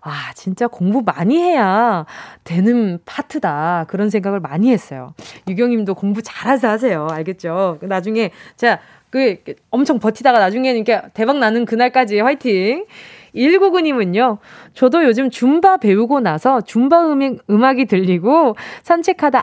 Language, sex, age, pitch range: Korean, female, 20-39, 195-295 Hz